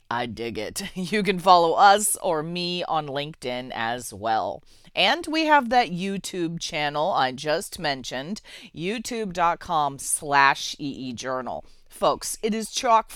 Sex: female